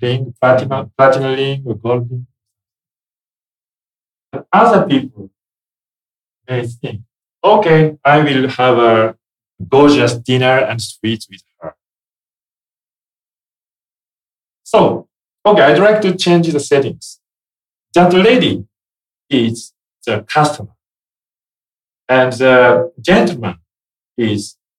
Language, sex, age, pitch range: Japanese, male, 40-59, 105-145 Hz